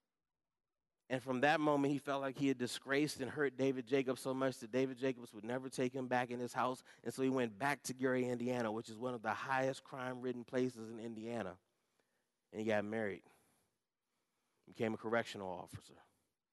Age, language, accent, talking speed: 30-49, English, American, 190 wpm